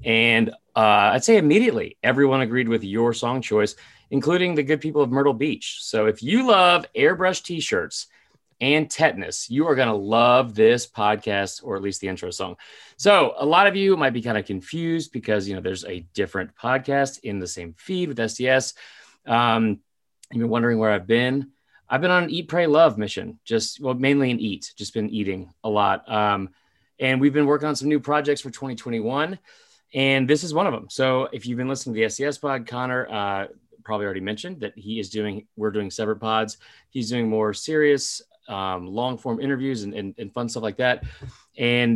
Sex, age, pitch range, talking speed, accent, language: male, 30-49, 110-145 Hz, 205 wpm, American, English